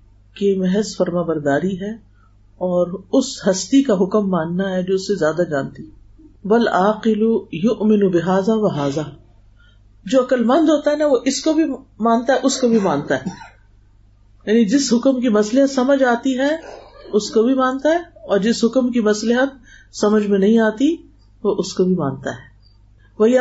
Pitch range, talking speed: 155-220 Hz, 165 wpm